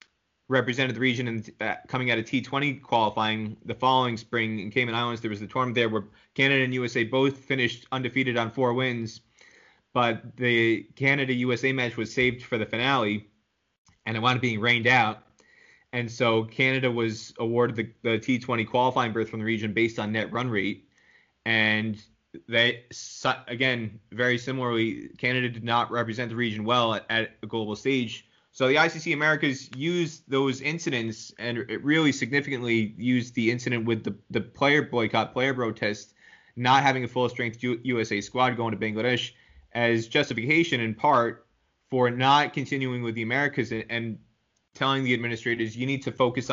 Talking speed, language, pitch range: 170 wpm, English, 110-130 Hz